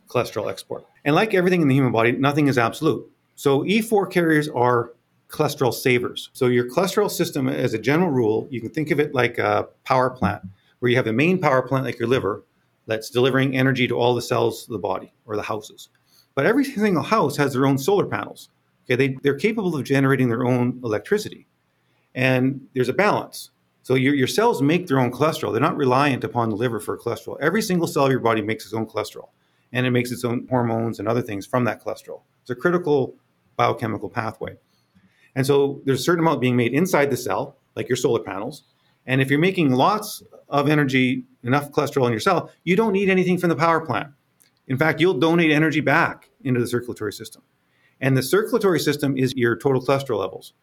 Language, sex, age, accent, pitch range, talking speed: English, male, 40-59, American, 125-155 Hz, 210 wpm